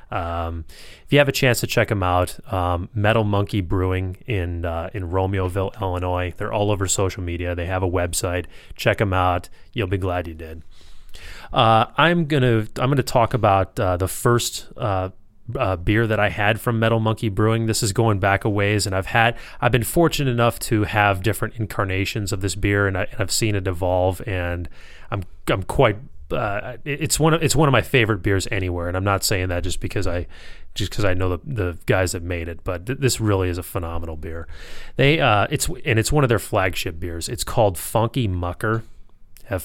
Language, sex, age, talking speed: English, male, 30-49, 210 wpm